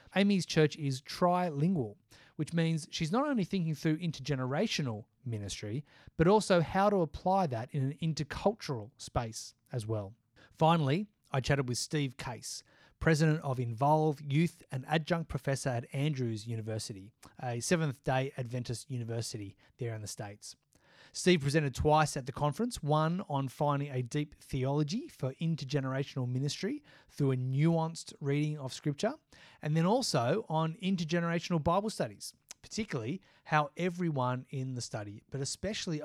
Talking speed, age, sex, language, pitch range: 140 wpm, 30-49, male, English, 125-165 Hz